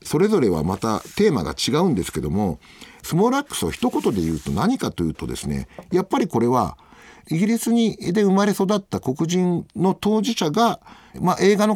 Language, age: Japanese, 50-69